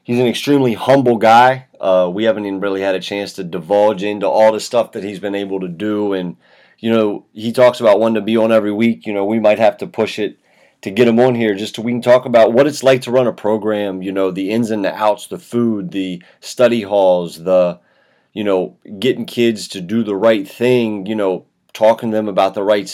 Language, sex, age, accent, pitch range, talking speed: English, male, 30-49, American, 100-145 Hz, 245 wpm